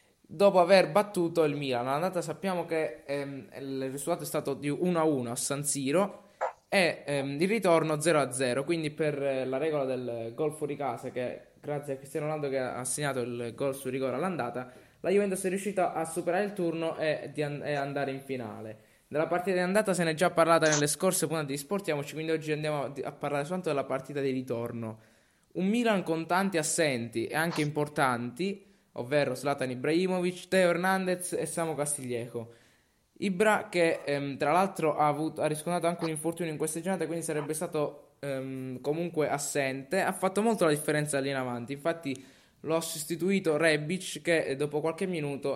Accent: native